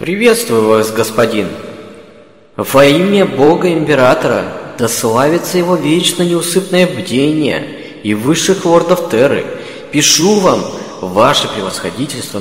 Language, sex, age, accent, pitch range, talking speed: Russian, male, 20-39, native, 105-155 Hz, 100 wpm